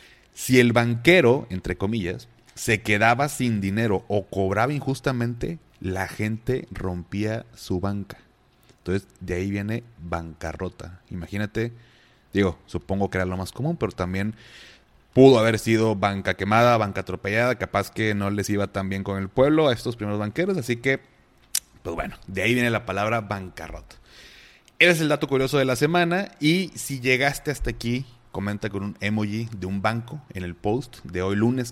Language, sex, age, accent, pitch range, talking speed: Spanish, male, 30-49, Mexican, 95-120 Hz, 170 wpm